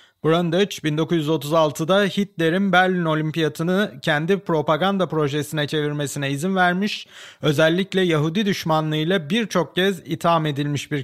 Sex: male